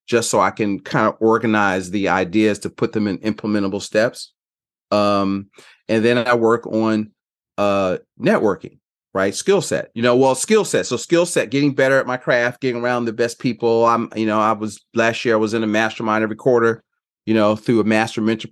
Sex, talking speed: male, 205 wpm